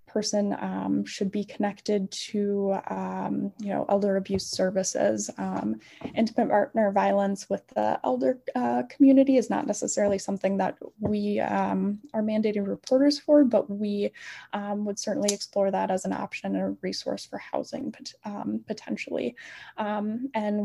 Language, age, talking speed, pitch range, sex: English, 10-29, 150 wpm, 195-235 Hz, female